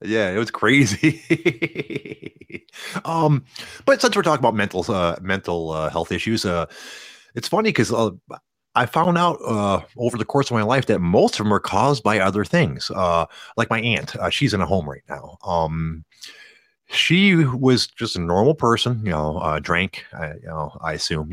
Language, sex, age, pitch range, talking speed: English, male, 30-49, 85-130 Hz, 190 wpm